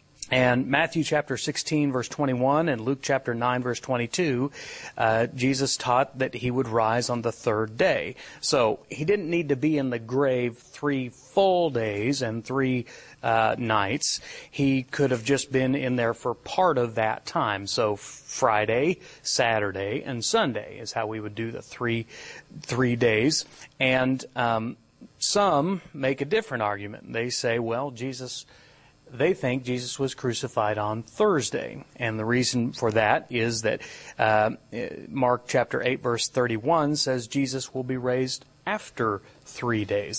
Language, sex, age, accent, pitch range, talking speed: English, male, 40-59, American, 115-140 Hz, 155 wpm